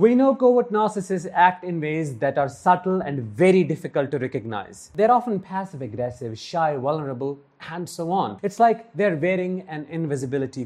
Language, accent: English, Indian